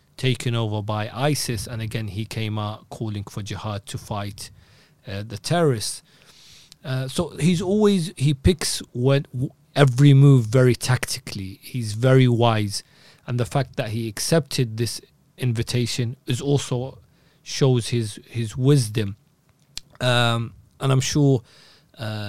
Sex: male